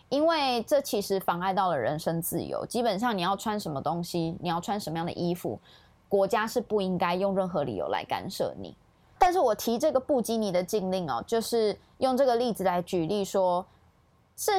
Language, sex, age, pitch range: Chinese, female, 20-39, 185-245 Hz